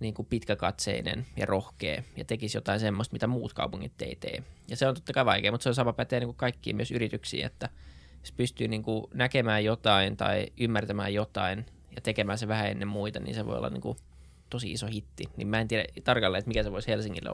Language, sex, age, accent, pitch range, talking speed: Finnish, male, 20-39, native, 100-115 Hz, 225 wpm